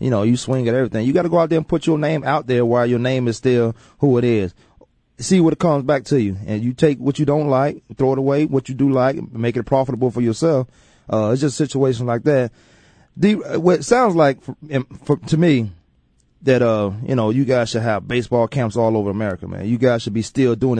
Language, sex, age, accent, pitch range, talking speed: English, male, 30-49, American, 110-135 Hz, 255 wpm